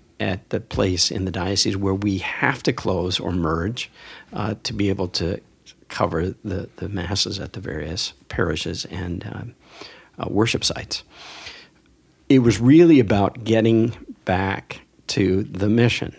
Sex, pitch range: male, 95-120 Hz